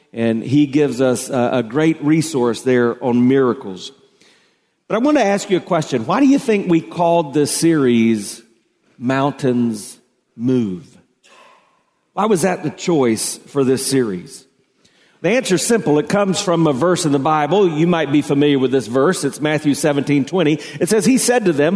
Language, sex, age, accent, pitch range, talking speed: English, male, 40-59, American, 140-195 Hz, 180 wpm